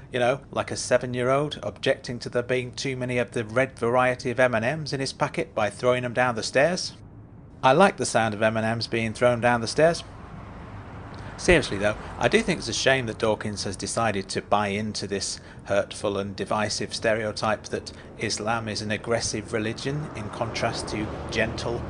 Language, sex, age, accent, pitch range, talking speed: English, male, 40-59, British, 105-125 Hz, 185 wpm